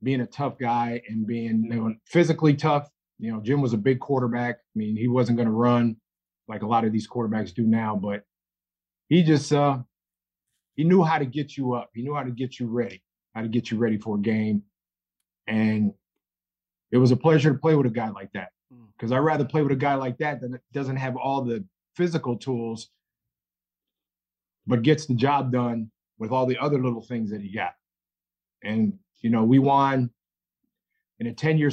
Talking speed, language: 200 wpm, English